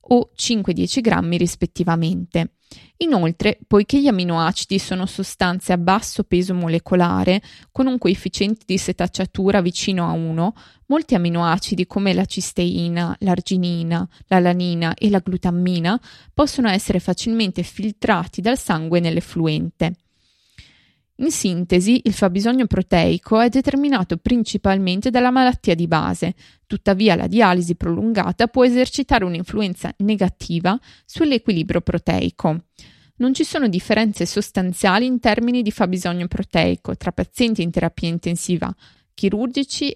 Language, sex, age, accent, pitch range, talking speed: Italian, female, 20-39, native, 175-225 Hz, 115 wpm